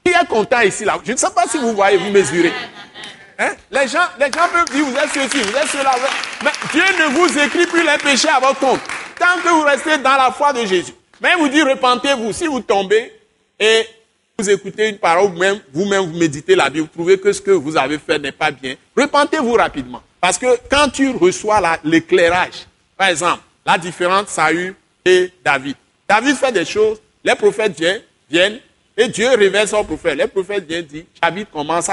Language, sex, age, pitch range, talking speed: French, male, 50-69, 170-285 Hz, 210 wpm